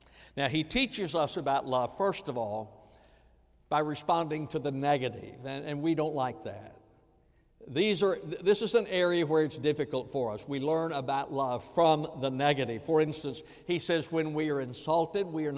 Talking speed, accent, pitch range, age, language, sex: 180 wpm, American, 140-175 Hz, 60-79, English, male